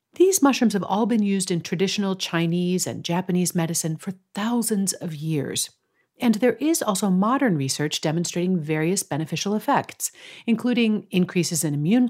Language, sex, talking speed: English, female, 150 wpm